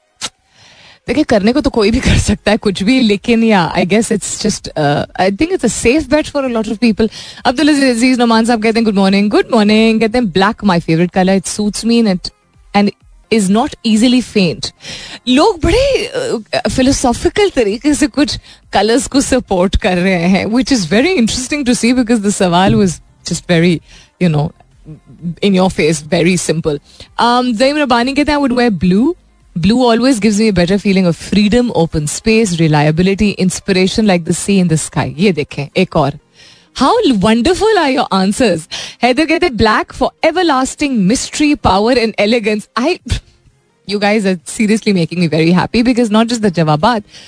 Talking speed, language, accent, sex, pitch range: 130 wpm, Hindi, native, female, 180-250 Hz